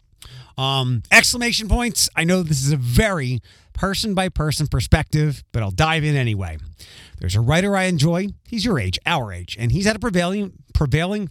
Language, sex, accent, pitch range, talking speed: English, male, American, 110-175 Hz, 180 wpm